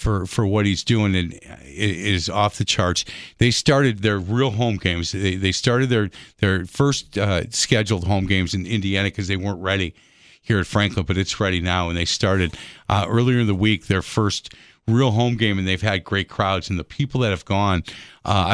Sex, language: male, English